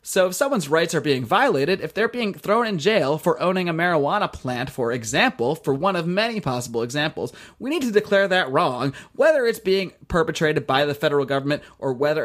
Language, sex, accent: English, male, American